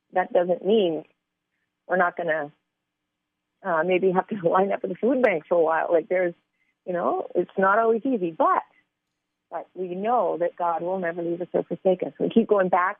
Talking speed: 210 wpm